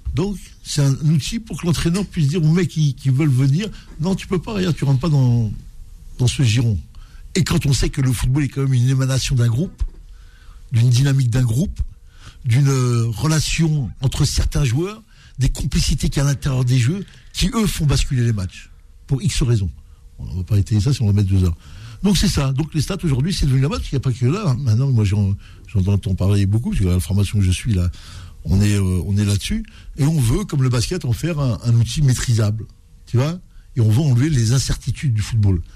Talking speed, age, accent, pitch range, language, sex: 235 wpm, 60-79, French, 110-145 Hz, French, male